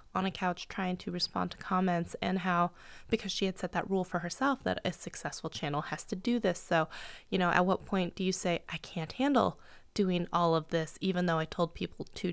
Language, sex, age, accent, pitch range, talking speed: English, female, 20-39, American, 185-220 Hz, 235 wpm